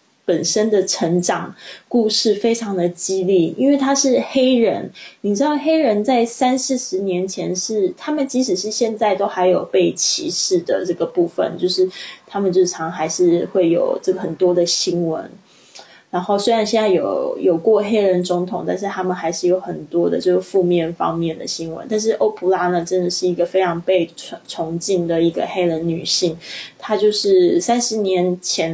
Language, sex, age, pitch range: Chinese, female, 20-39, 175-225 Hz